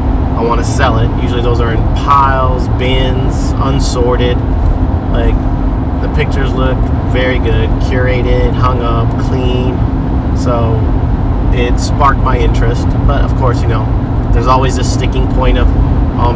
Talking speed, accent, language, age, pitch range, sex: 145 wpm, American, English, 30-49, 95-125 Hz, male